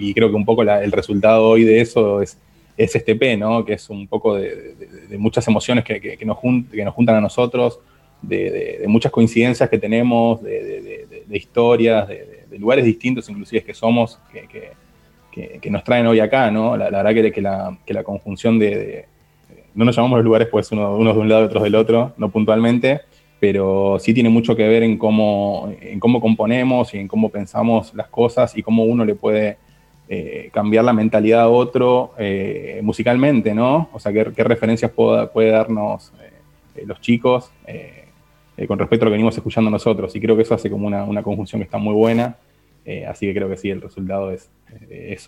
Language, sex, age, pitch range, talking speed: Spanish, male, 20-39, 105-120 Hz, 200 wpm